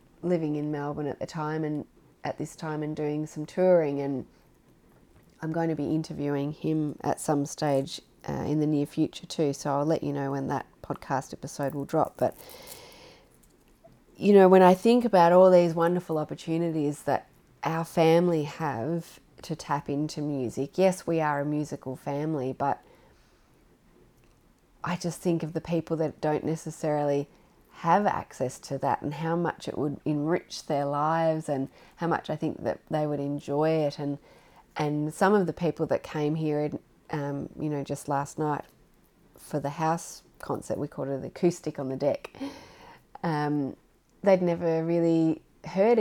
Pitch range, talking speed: 145-165 Hz, 170 wpm